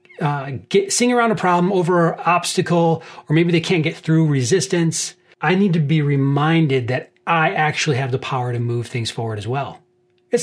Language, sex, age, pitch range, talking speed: English, male, 30-49, 135-180 Hz, 190 wpm